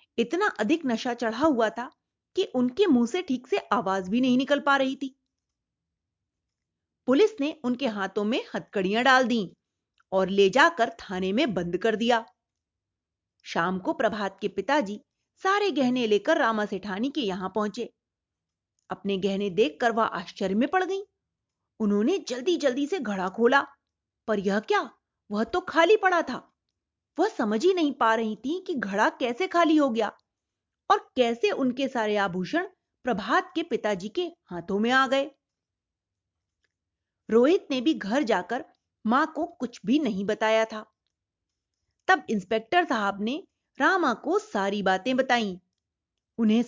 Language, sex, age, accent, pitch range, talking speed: Hindi, female, 30-49, native, 210-305 Hz, 150 wpm